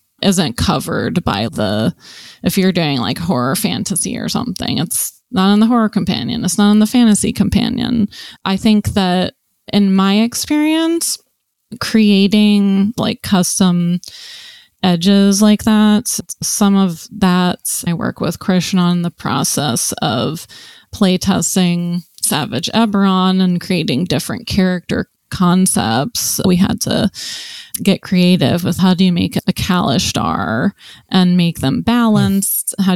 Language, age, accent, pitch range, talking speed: English, 20-39, American, 180-215 Hz, 130 wpm